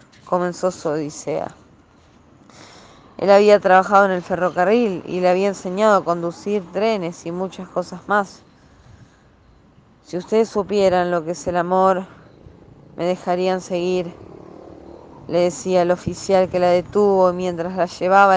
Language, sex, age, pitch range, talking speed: Spanish, female, 20-39, 175-200 Hz, 135 wpm